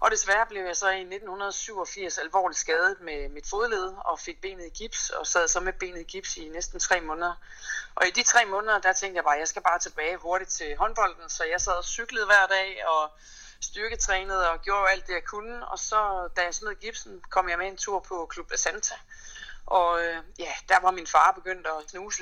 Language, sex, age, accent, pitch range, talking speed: Danish, female, 30-49, native, 165-210 Hz, 225 wpm